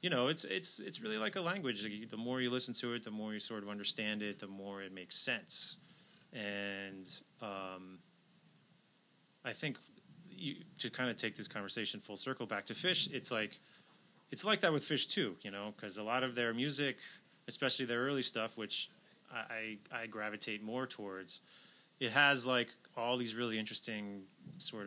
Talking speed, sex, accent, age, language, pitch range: 190 wpm, male, American, 20-39, English, 95-115 Hz